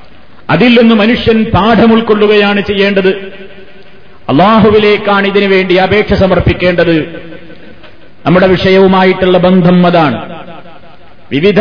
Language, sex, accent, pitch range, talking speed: Malayalam, male, native, 180-210 Hz, 65 wpm